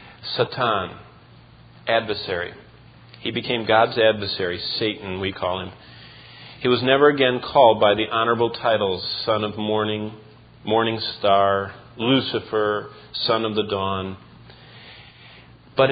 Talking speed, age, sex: 115 wpm, 40-59, male